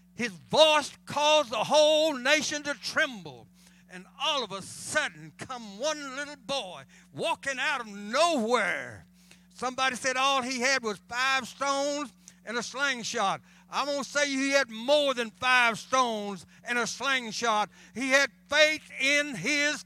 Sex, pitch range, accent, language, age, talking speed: male, 230-325 Hz, American, English, 60-79, 150 wpm